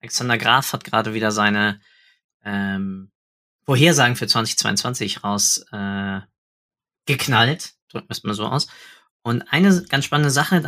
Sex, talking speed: male, 120 wpm